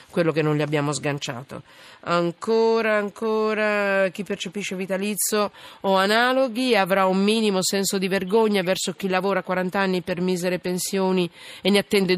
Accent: native